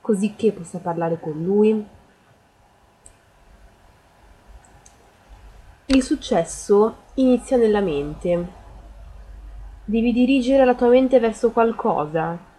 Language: Italian